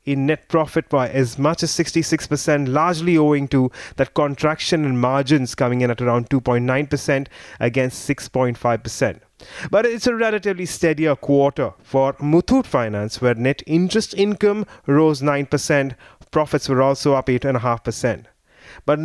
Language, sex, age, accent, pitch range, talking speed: English, male, 30-49, Indian, 135-175 Hz, 135 wpm